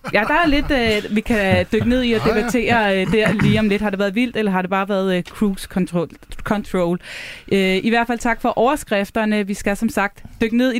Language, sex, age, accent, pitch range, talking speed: Danish, female, 20-39, native, 170-225 Hz, 245 wpm